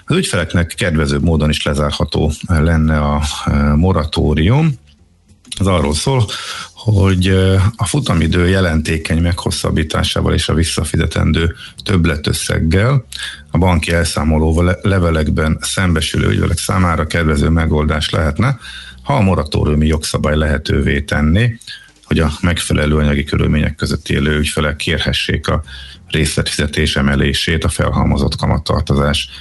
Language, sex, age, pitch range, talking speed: Hungarian, male, 50-69, 75-95 Hz, 105 wpm